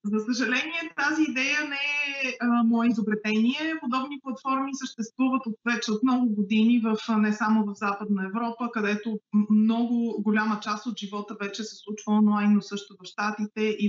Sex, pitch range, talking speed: female, 220-280 Hz, 170 wpm